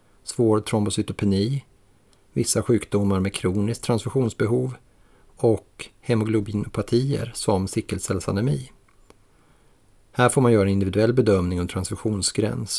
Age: 30-49